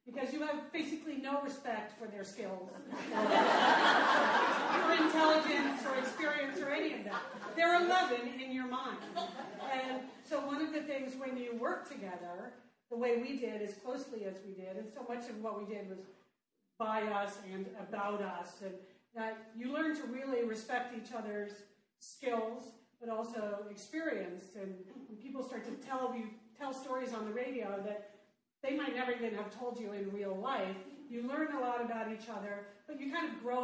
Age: 40-59